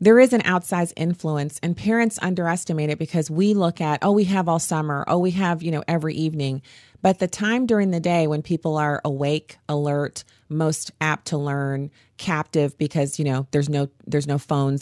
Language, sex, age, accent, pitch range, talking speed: English, female, 30-49, American, 140-175 Hz, 200 wpm